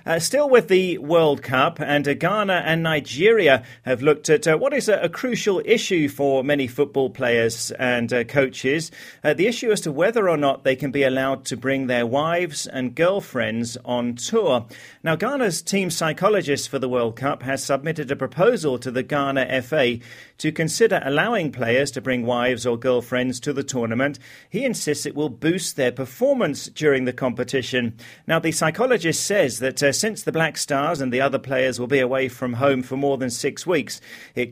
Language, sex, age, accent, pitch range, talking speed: English, male, 40-59, British, 125-155 Hz, 195 wpm